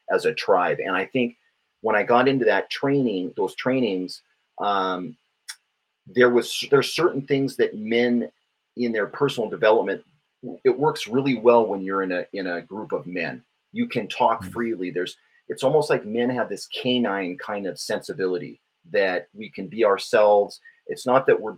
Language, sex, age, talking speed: English, male, 30-49, 175 wpm